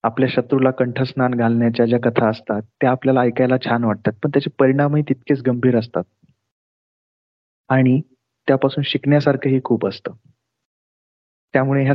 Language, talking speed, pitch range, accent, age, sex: Marathi, 75 wpm, 120-145 Hz, native, 30-49, male